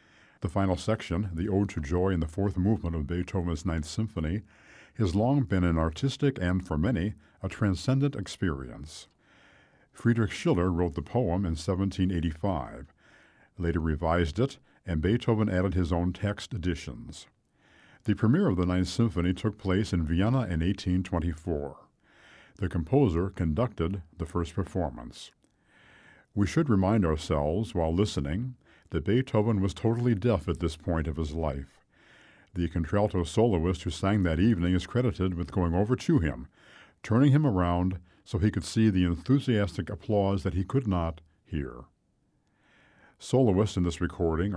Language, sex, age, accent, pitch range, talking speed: English, male, 60-79, American, 85-105 Hz, 150 wpm